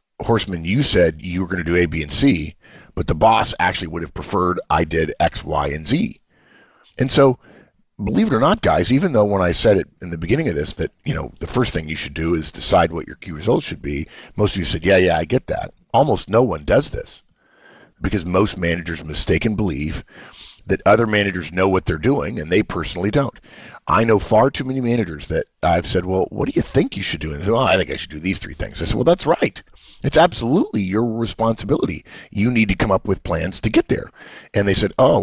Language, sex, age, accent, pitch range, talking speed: English, male, 50-69, American, 85-110 Hz, 240 wpm